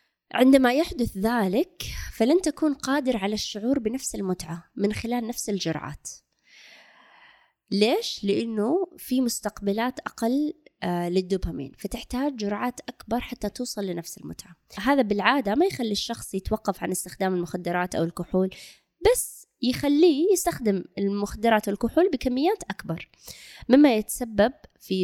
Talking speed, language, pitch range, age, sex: 115 wpm, Arabic, 195-260 Hz, 20-39, female